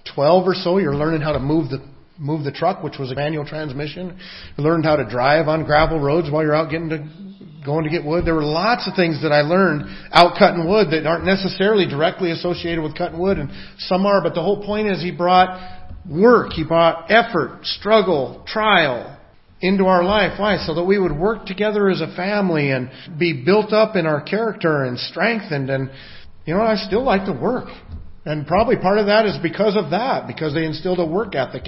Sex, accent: male, American